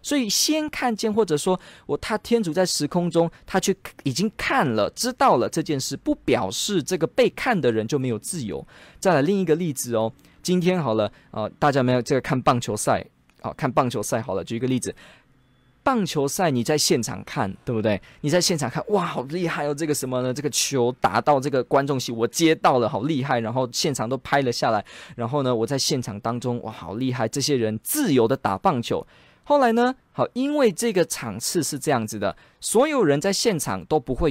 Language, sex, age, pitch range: Chinese, male, 20-39, 120-180 Hz